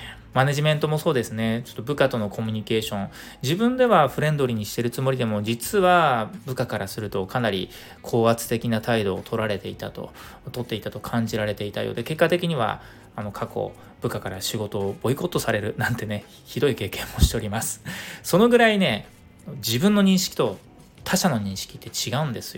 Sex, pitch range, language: male, 110-150 Hz, Japanese